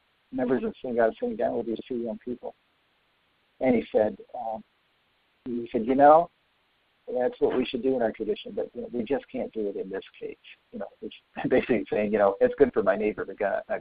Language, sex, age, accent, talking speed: English, male, 50-69, American, 220 wpm